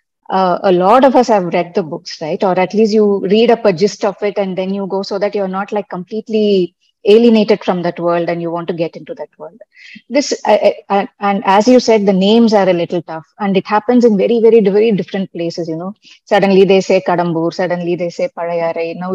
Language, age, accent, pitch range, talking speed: Telugu, 20-39, native, 180-225 Hz, 235 wpm